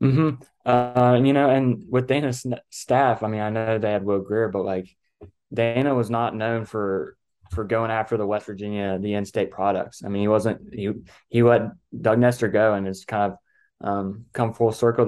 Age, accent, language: 20-39, American, English